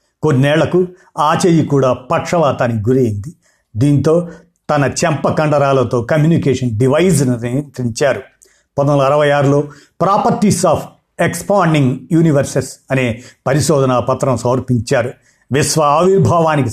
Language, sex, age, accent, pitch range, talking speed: Telugu, male, 50-69, native, 130-165 Hz, 95 wpm